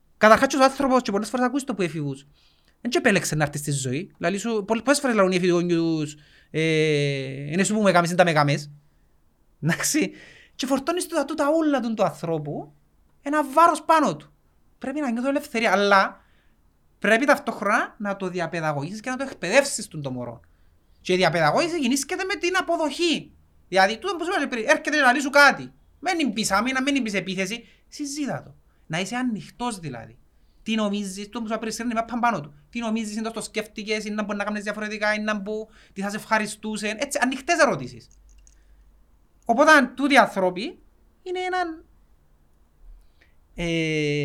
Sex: male